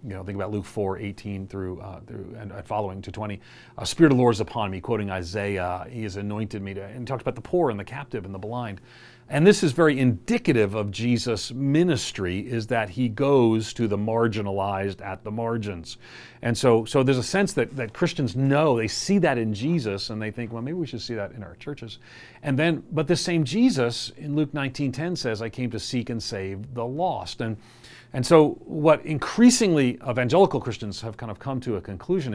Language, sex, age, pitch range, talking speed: English, male, 40-59, 110-140 Hz, 220 wpm